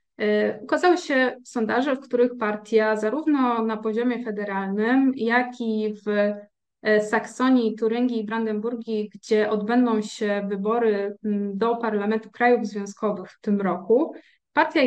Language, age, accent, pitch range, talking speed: Polish, 20-39, native, 215-255 Hz, 115 wpm